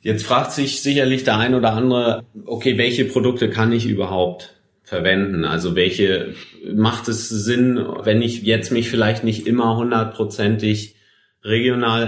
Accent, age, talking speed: German, 30-49, 145 wpm